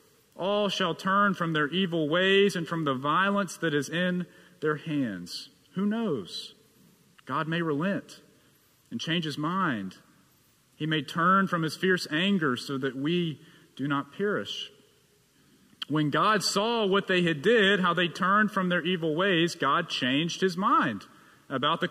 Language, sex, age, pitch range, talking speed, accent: English, male, 40-59, 165-225 Hz, 160 wpm, American